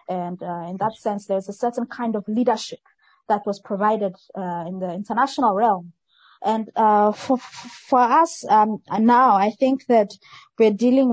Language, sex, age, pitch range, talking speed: English, female, 20-39, 190-230 Hz, 165 wpm